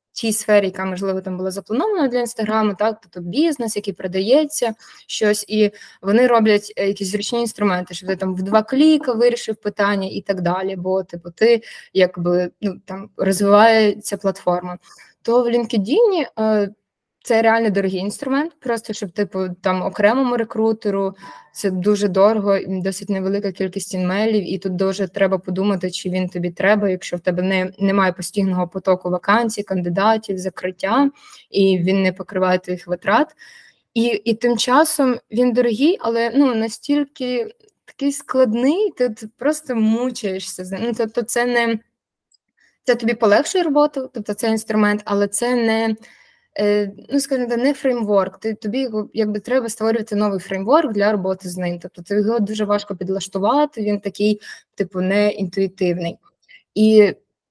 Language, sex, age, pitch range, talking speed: Ukrainian, female, 20-39, 190-235 Hz, 150 wpm